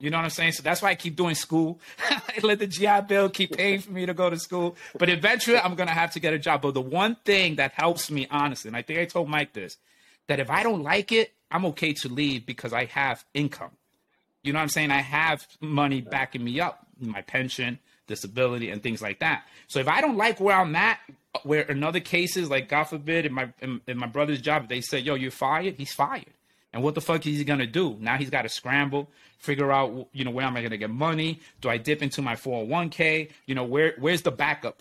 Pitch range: 135-170 Hz